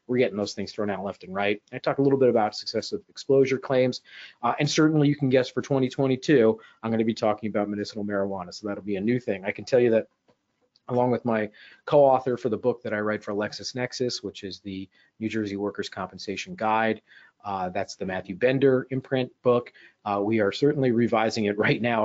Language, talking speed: English, 220 wpm